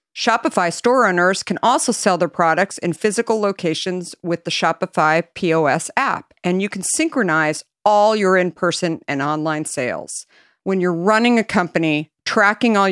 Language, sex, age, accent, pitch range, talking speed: English, female, 50-69, American, 160-210 Hz, 155 wpm